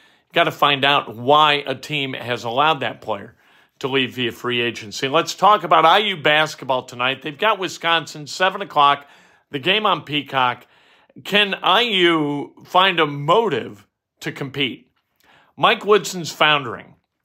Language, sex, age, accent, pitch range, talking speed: English, male, 50-69, American, 140-180 Hz, 145 wpm